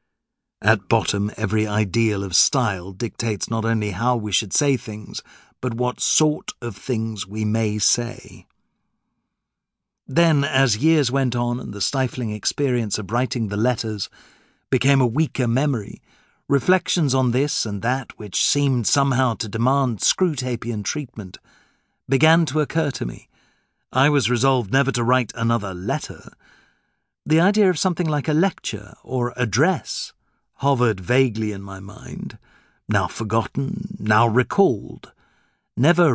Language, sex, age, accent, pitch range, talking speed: English, male, 50-69, British, 110-140 Hz, 140 wpm